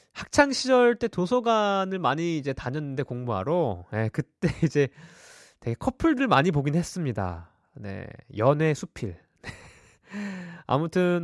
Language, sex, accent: Korean, male, native